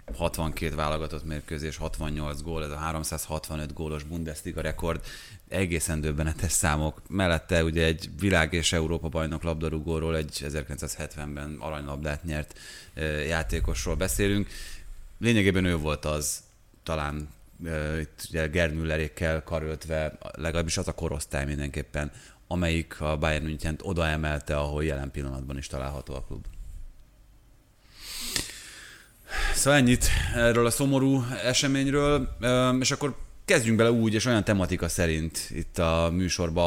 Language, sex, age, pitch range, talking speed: Hungarian, male, 30-49, 80-105 Hz, 115 wpm